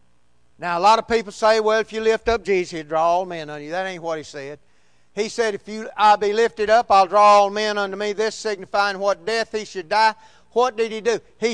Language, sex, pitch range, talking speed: English, male, 175-245 Hz, 250 wpm